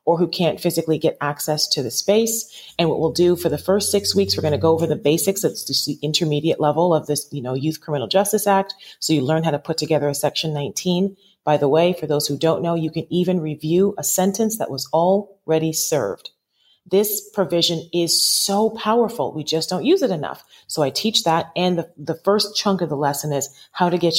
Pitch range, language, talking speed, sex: 150-185 Hz, English, 230 wpm, female